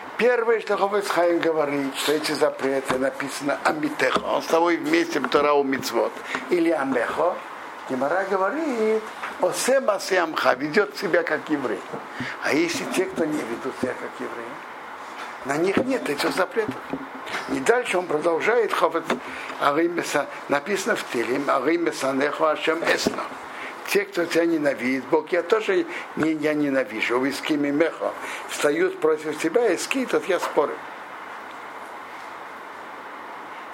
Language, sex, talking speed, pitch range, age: Russian, male, 135 wpm, 140-230 Hz, 60-79